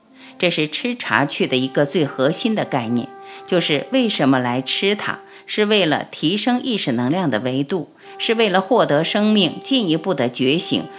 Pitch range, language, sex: 130-215 Hz, Chinese, female